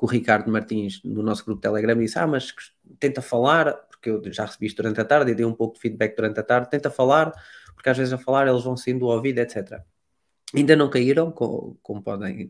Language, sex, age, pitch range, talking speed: Portuguese, male, 20-39, 110-150 Hz, 230 wpm